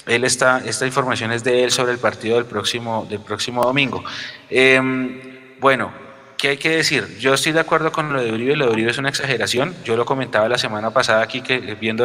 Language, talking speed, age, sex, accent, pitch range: Spanish, 220 wpm, 30-49, male, Colombian, 110-140 Hz